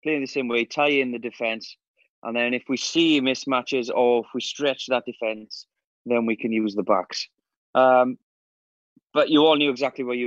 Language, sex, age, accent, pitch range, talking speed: English, male, 20-39, British, 125-140 Hz, 195 wpm